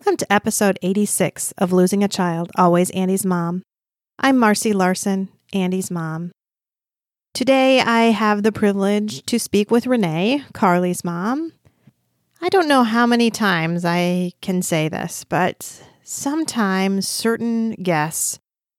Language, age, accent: English, 40-59, American